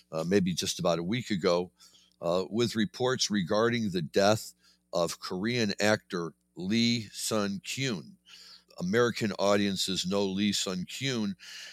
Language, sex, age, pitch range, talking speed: English, male, 60-79, 80-105 Hz, 120 wpm